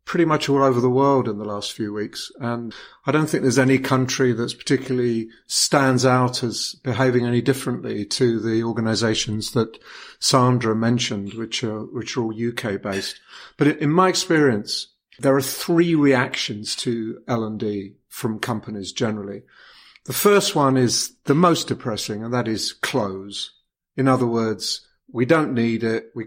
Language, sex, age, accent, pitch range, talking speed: English, male, 50-69, British, 110-135 Hz, 165 wpm